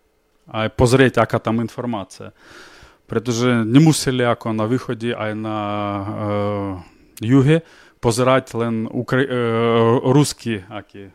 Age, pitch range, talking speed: 20-39, 110-135 Hz, 90 wpm